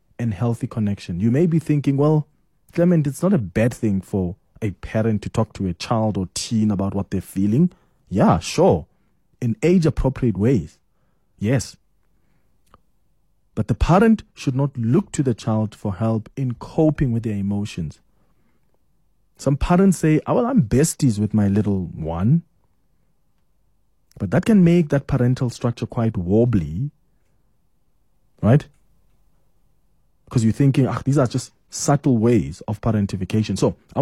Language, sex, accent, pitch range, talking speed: English, male, South African, 110-145 Hz, 145 wpm